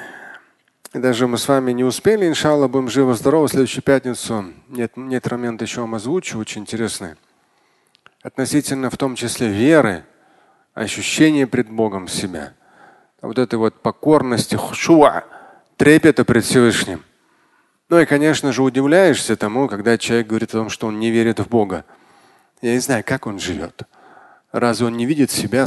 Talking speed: 150 wpm